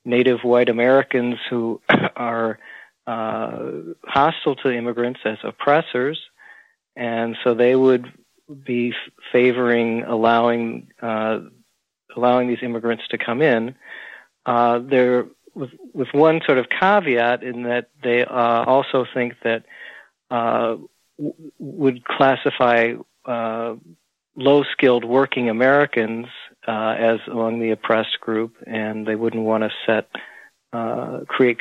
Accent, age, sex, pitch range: American, 40-59, male, 115-125 Hz